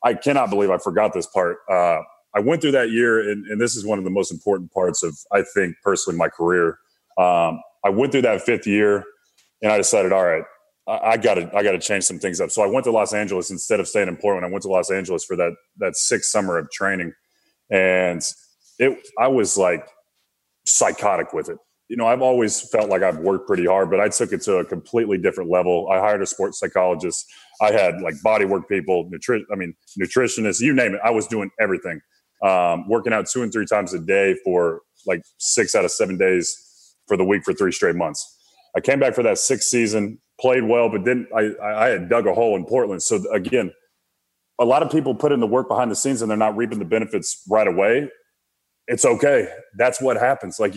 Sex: male